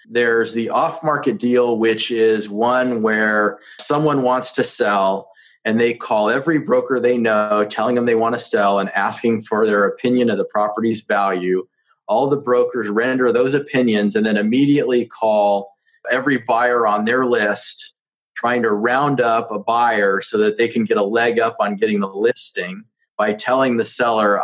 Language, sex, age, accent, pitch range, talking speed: English, male, 30-49, American, 110-145 Hz, 175 wpm